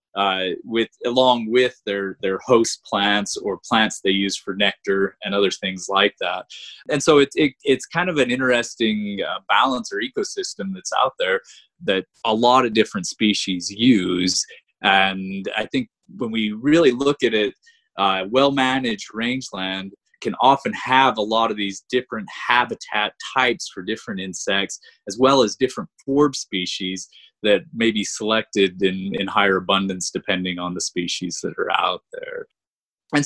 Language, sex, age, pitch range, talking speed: English, male, 20-39, 100-130 Hz, 160 wpm